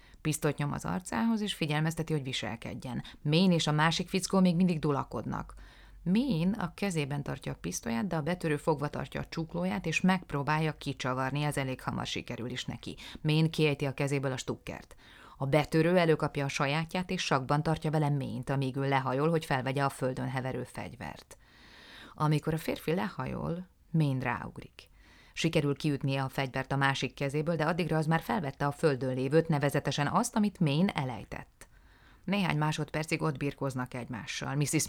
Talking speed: 165 wpm